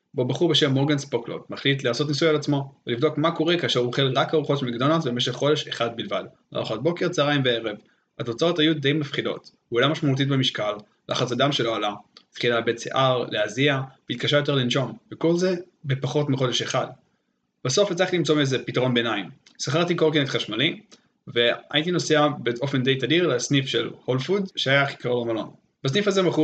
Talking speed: 140 wpm